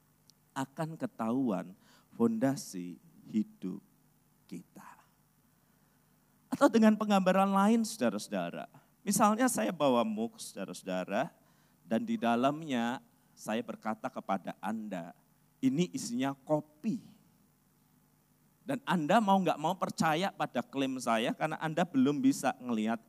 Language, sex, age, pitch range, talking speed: Malay, male, 50-69, 160-270 Hz, 100 wpm